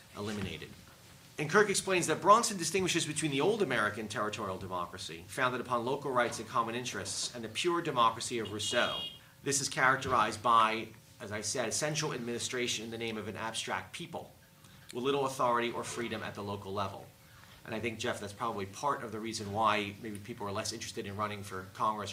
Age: 40-59